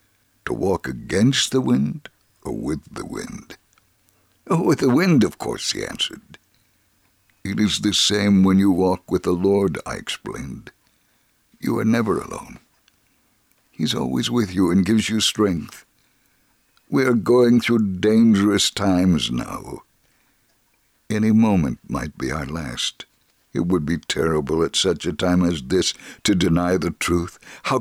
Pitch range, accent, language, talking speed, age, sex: 90-110 Hz, American, English, 145 wpm, 60-79, male